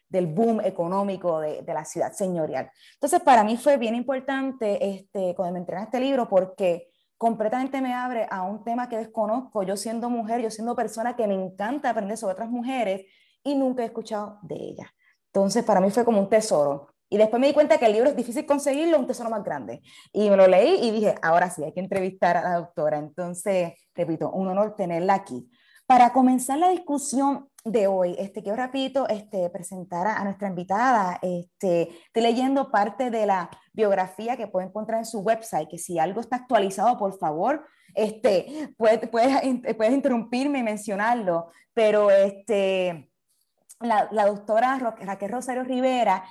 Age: 20-39